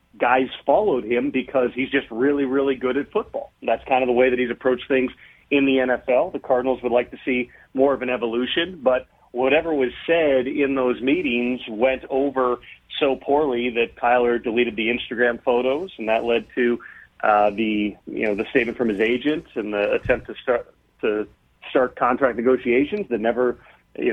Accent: American